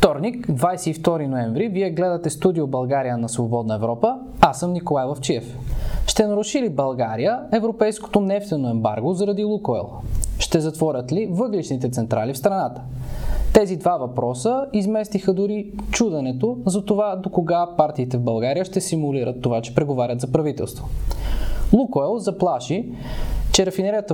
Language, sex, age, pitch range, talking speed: Bulgarian, male, 20-39, 125-200 Hz, 135 wpm